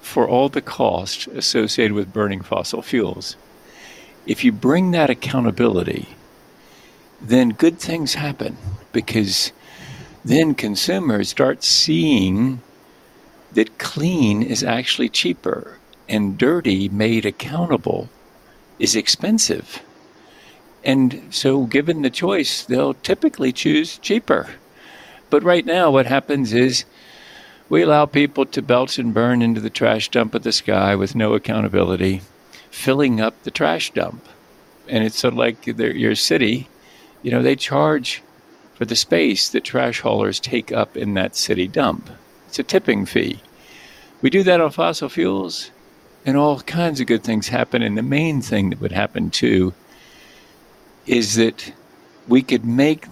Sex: male